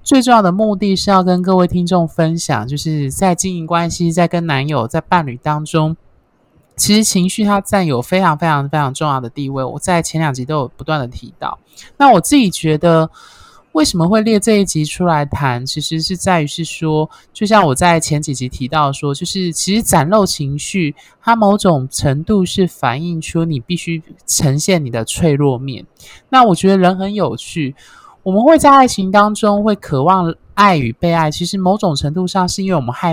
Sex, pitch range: male, 150-195 Hz